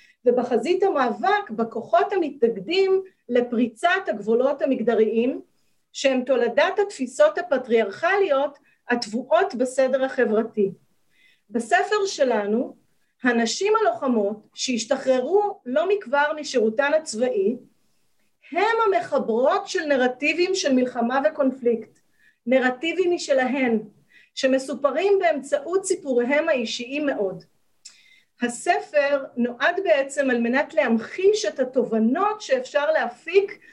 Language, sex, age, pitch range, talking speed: Hebrew, female, 40-59, 240-335 Hz, 85 wpm